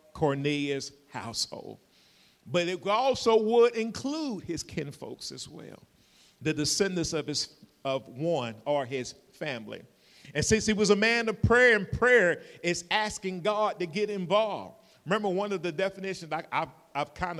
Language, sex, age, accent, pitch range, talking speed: English, male, 50-69, American, 130-175 Hz, 145 wpm